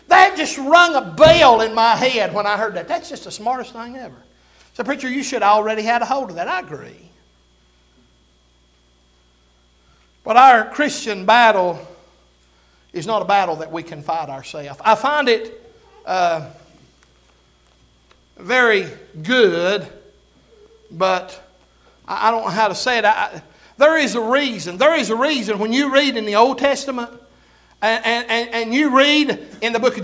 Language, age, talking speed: English, 60-79, 165 wpm